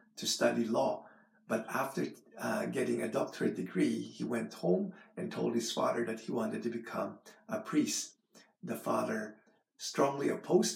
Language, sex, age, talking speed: English, male, 50-69, 155 wpm